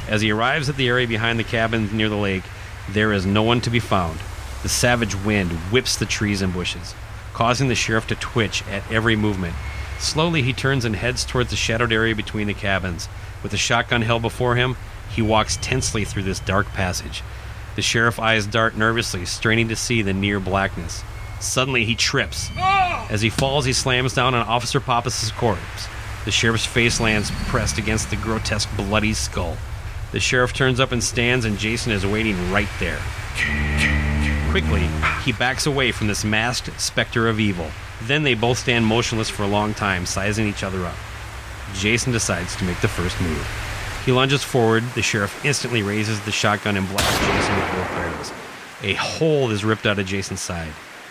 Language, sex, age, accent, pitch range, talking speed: English, male, 30-49, American, 100-115 Hz, 185 wpm